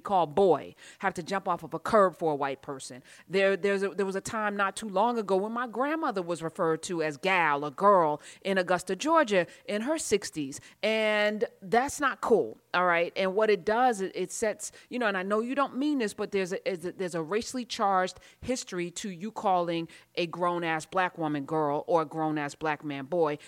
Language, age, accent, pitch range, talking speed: English, 30-49, American, 165-215 Hz, 215 wpm